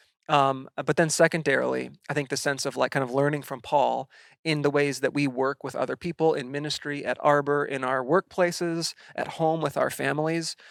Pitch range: 135-160 Hz